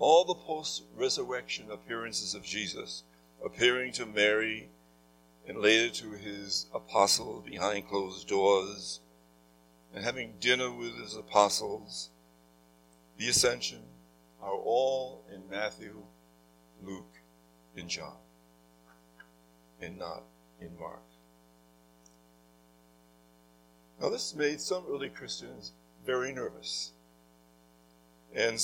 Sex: male